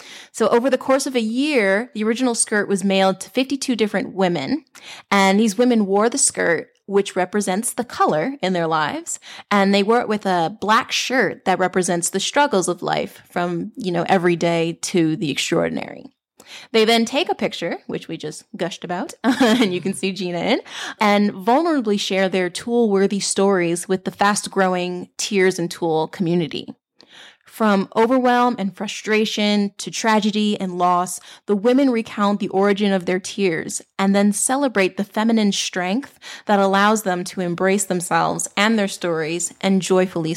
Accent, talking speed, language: American, 170 wpm, English